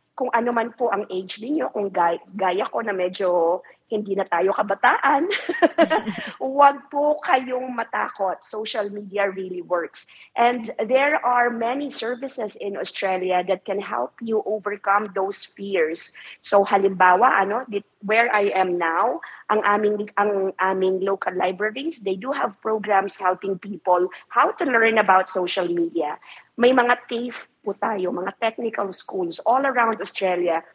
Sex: female